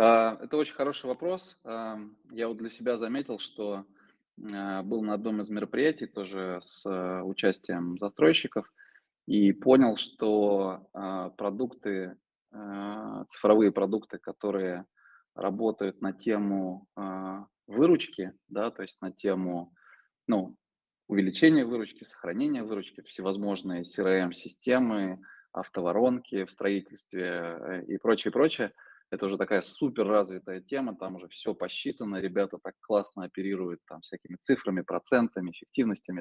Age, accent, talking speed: 20-39, native, 110 wpm